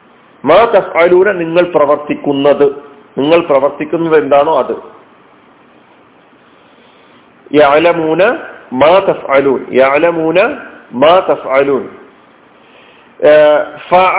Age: 40-59